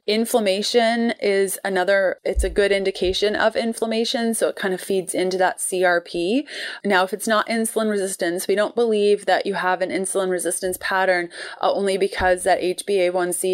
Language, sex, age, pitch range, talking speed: English, female, 20-39, 180-220 Hz, 165 wpm